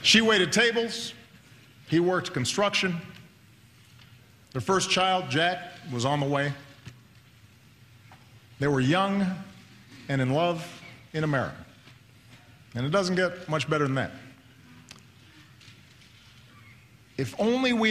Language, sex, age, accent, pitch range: Chinese, male, 50-69, American, 120-165 Hz